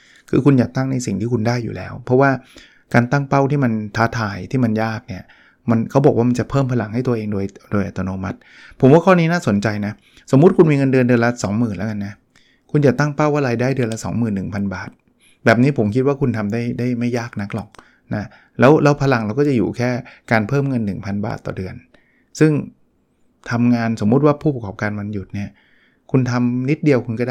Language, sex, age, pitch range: Thai, male, 20-39, 105-135 Hz